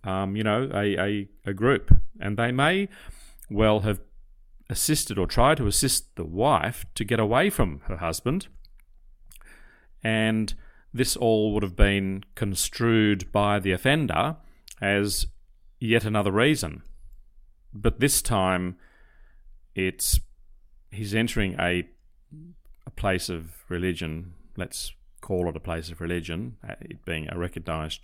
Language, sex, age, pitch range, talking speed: English, male, 40-59, 90-110 Hz, 130 wpm